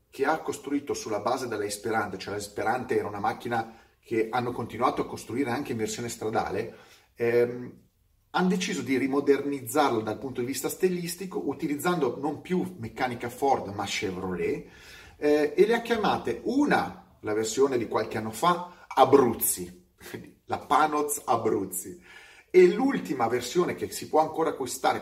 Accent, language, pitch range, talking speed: native, Italian, 105-150 Hz, 150 wpm